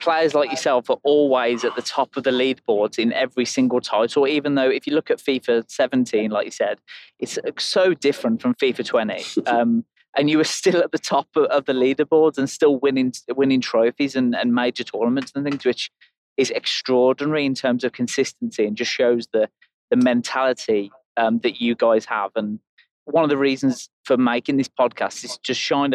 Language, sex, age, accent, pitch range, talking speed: English, male, 30-49, British, 120-145 Hz, 200 wpm